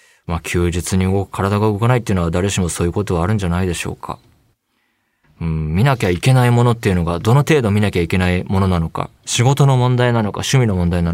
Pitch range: 85-115 Hz